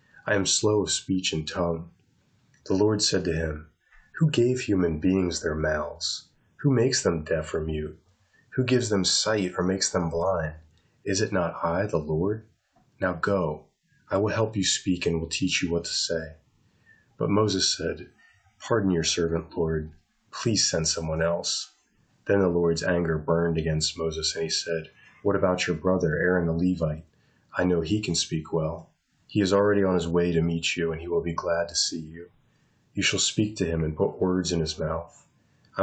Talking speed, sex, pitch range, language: 195 wpm, male, 80-95 Hz, English